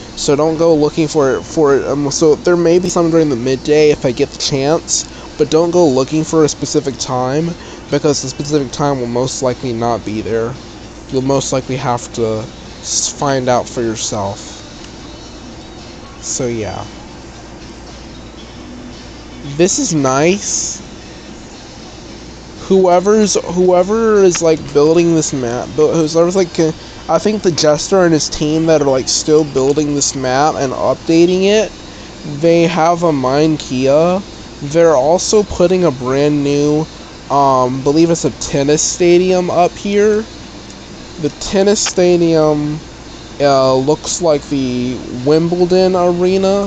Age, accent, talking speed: 20-39, American, 140 wpm